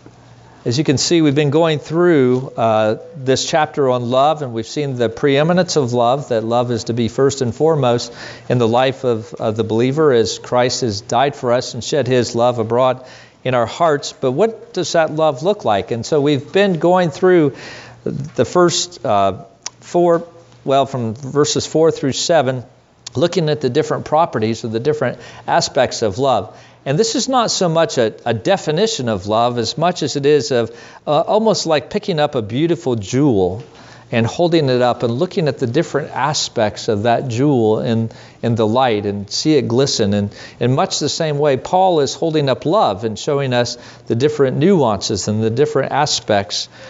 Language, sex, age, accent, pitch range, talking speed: English, male, 50-69, American, 115-155 Hz, 190 wpm